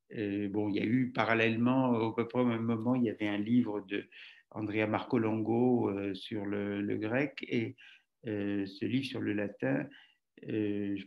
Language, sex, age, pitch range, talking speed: French, male, 60-79, 105-130 Hz, 190 wpm